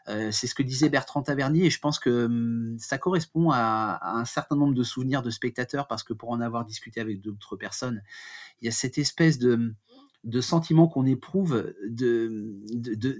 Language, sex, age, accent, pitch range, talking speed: French, male, 30-49, French, 115-145 Hz, 205 wpm